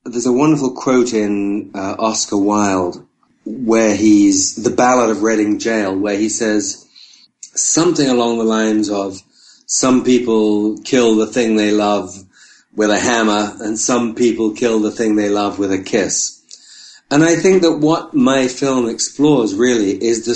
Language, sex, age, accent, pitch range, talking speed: English, male, 40-59, British, 105-130 Hz, 160 wpm